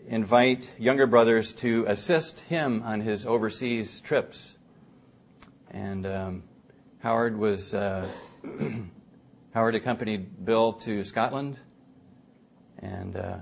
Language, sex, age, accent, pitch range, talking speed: English, male, 40-59, American, 110-130 Hz, 95 wpm